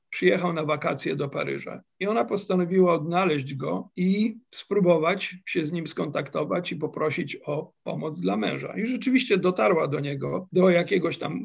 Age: 50-69